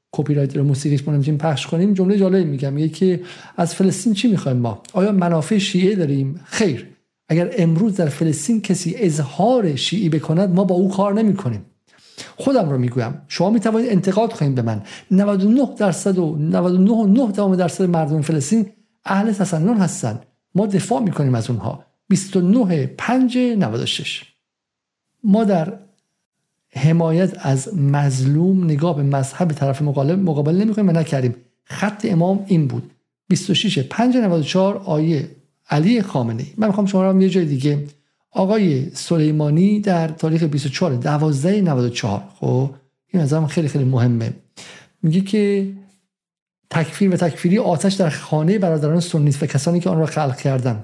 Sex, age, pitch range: male, 50-69, 145-195 Hz